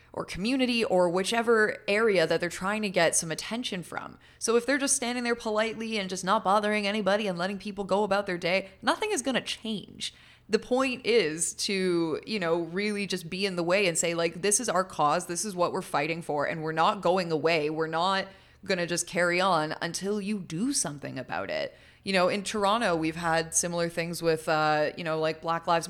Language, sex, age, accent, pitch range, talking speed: English, female, 20-39, American, 165-220 Hz, 220 wpm